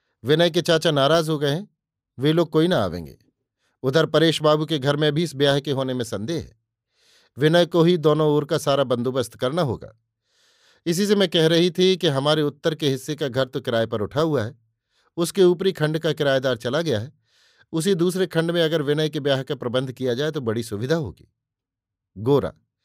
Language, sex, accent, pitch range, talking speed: Hindi, male, native, 115-160 Hz, 210 wpm